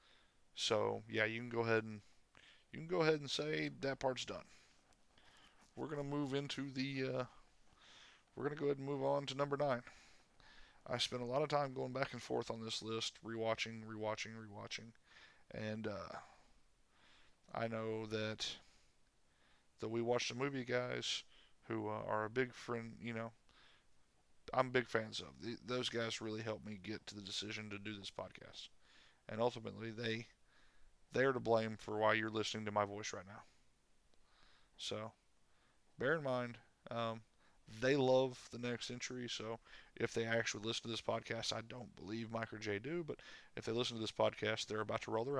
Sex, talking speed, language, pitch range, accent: male, 185 wpm, English, 110-125 Hz, American